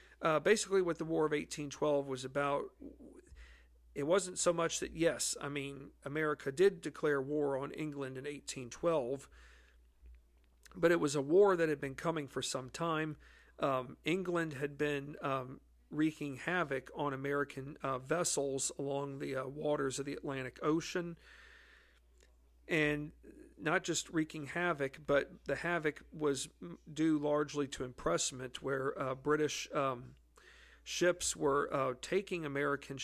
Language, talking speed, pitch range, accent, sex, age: English, 140 wpm, 135-160 Hz, American, male, 50-69